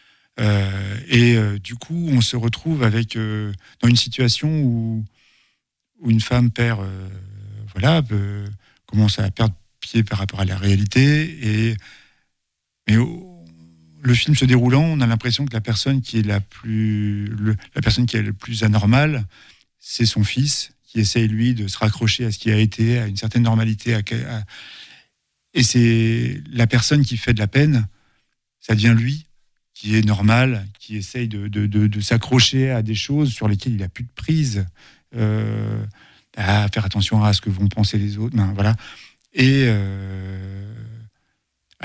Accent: French